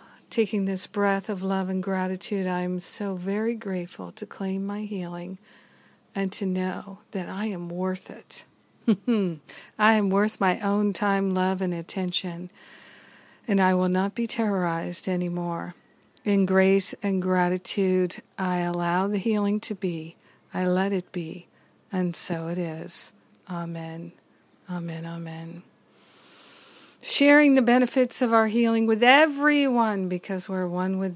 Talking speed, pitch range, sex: 140 wpm, 180-220 Hz, female